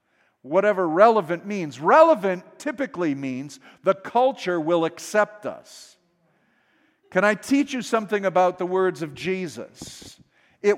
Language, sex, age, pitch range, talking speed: English, male, 50-69, 165-215 Hz, 120 wpm